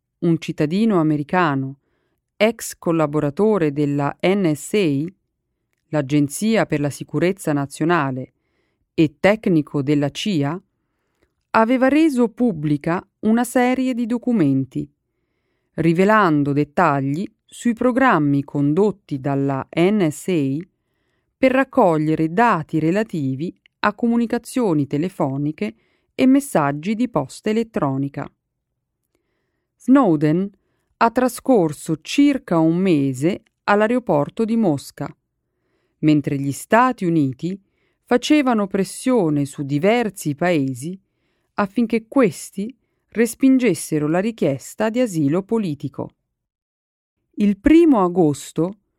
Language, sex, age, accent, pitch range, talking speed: Italian, female, 40-59, native, 150-225 Hz, 85 wpm